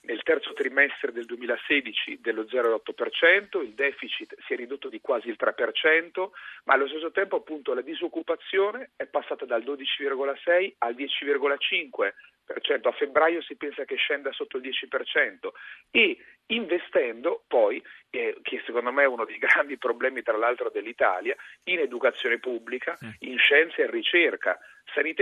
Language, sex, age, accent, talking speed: Italian, male, 40-59, native, 145 wpm